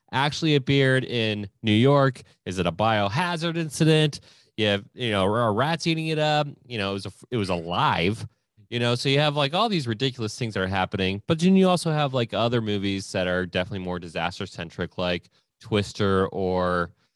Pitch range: 100-140 Hz